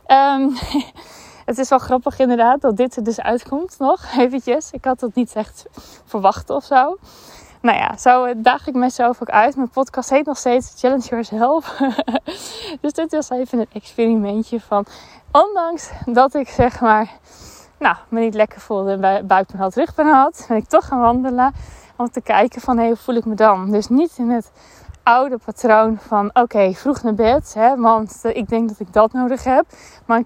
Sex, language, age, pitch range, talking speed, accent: female, Dutch, 20-39, 220-265 Hz, 190 wpm, Dutch